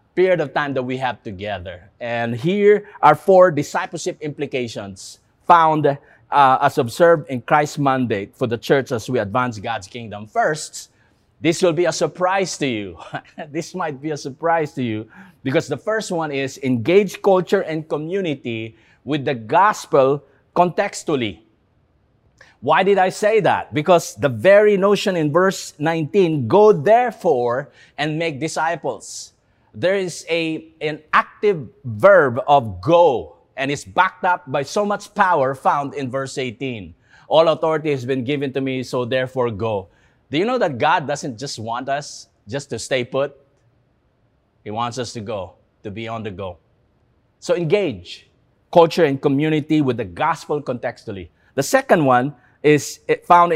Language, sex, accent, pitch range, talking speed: English, male, Filipino, 125-170 Hz, 155 wpm